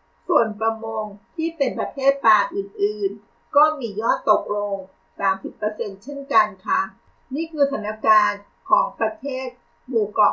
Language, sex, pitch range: Thai, female, 205-300 Hz